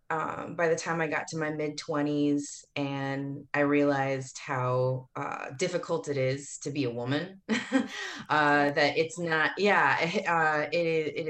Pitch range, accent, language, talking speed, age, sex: 135-160 Hz, American, English, 160 wpm, 20-39, female